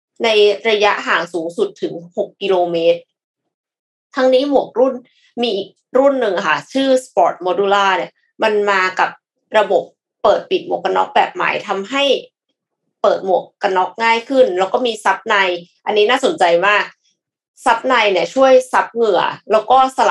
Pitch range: 195-265 Hz